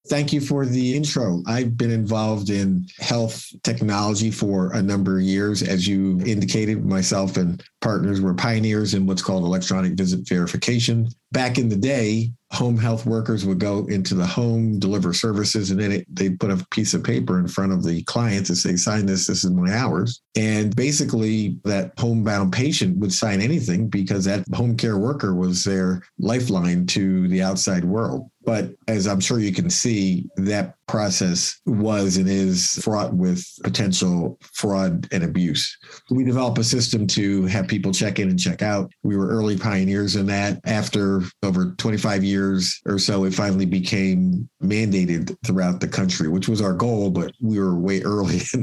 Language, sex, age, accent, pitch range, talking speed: English, male, 50-69, American, 95-110 Hz, 180 wpm